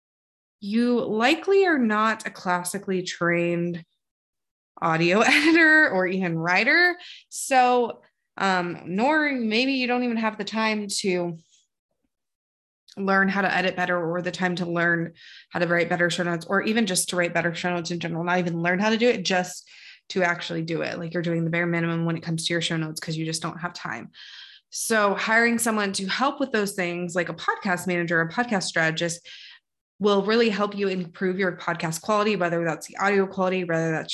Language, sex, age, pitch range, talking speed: English, female, 20-39, 165-200 Hz, 195 wpm